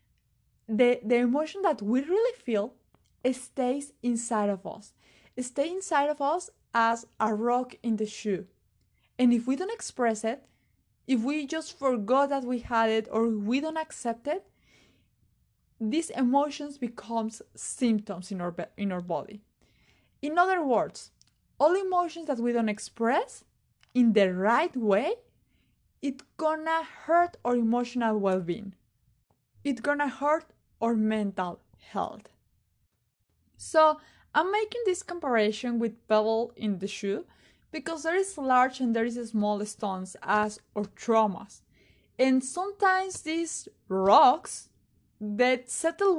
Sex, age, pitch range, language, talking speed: female, 20-39, 215-290 Hz, Spanish, 135 wpm